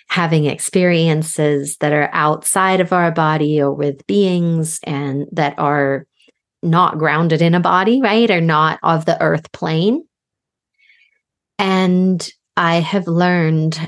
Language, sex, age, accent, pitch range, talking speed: English, female, 30-49, American, 155-185 Hz, 130 wpm